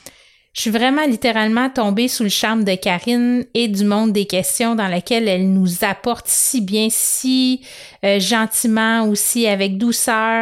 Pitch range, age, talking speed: 200-245 Hz, 30-49, 160 wpm